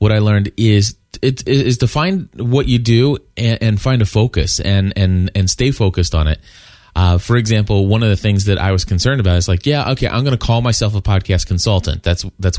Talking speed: 235 wpm